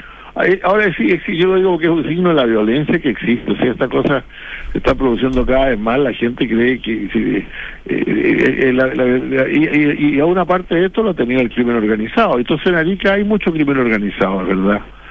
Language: Spanish